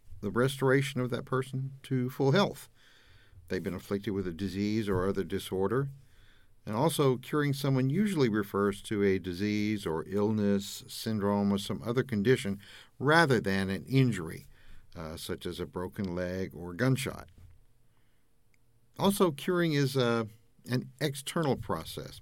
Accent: American